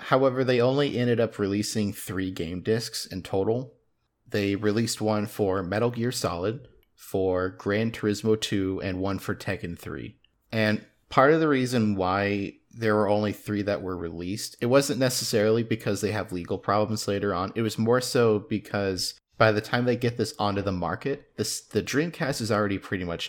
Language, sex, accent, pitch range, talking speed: English, male, American, 95-110 Hz, 185 wpm